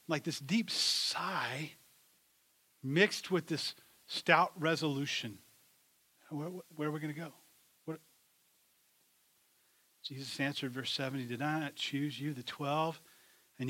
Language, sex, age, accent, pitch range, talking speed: English, male, 40-59, American, 130-155 Hz, 125 wpm